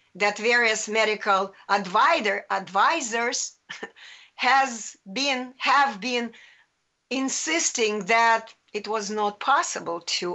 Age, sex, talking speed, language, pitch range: 50-69, female, 95 wpm, English, 220-275 Hz